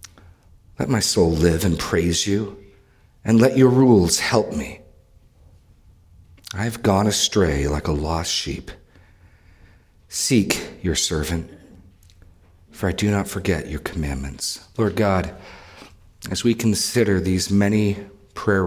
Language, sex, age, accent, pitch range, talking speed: English, male, 40-59, American, 85-105 Hz, 120 wpm